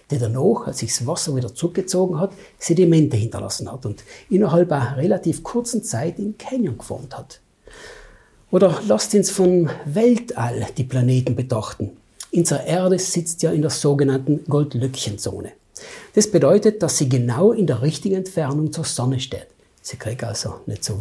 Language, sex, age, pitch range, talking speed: German, male, 60-79, 125-180 Hz, 160 wpm